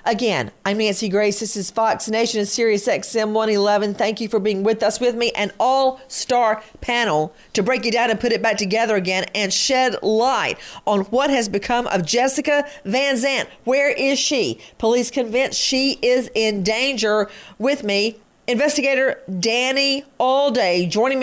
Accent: American